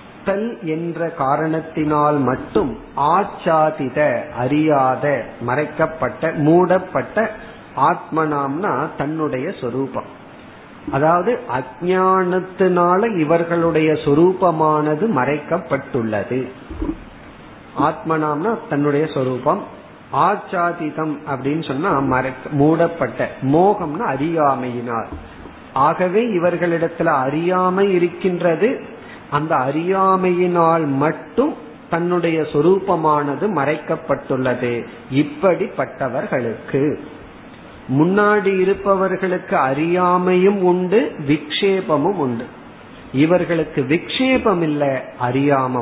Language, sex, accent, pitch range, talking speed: Tamil, male, native, 145-185 Hz, 60 wpm